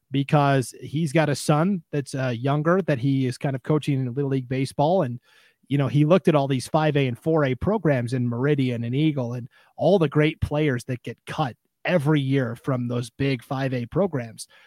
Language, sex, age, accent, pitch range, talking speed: English, male, 30-49, American, 130-160 Hz, 200 wpm